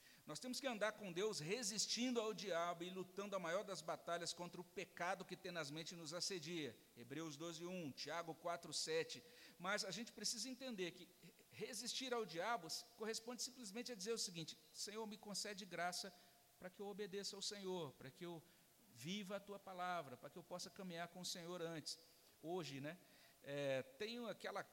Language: Portuguese